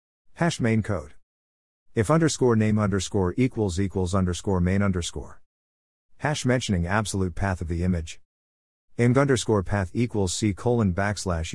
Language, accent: English, American